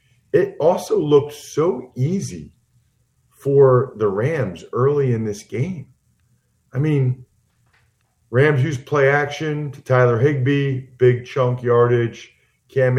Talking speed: 115 wpm